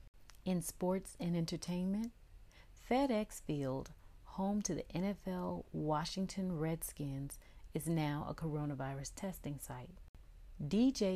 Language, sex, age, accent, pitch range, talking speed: English, female, 40-59, American, 145-170 Hz, 100 wpm